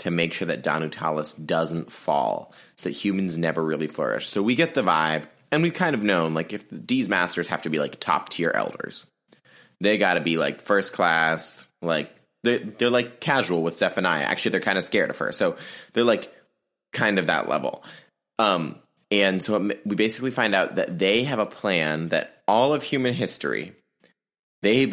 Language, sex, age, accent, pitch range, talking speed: English, male, 20-39, American, 80-105 Hz, 195 wpm